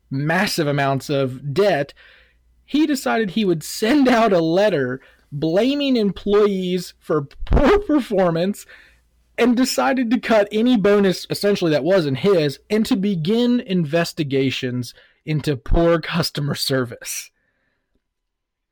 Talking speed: 110 wpm